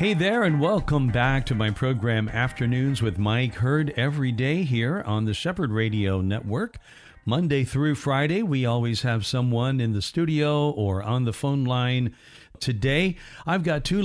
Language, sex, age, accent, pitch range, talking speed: English, male, 50-69, American, 110-145 Hz, 165 wpm